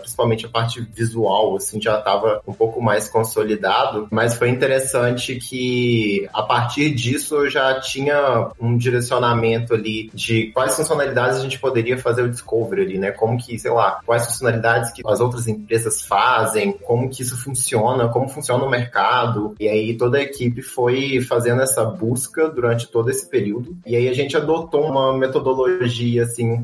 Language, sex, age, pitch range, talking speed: Portuguese, male, 20-39, 115-145 Hz, 170 wpm